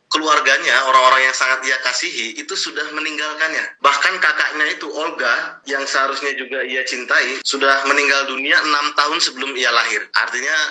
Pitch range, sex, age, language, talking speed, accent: 130-155 Hz, male, 30-49, Indonesian, 150 wpm, native